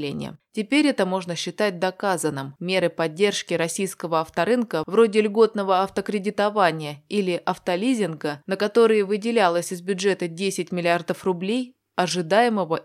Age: 20-39